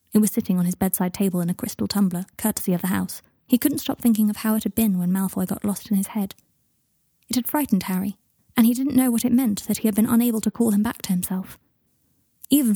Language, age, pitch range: English, 20-39, 195-240 Hz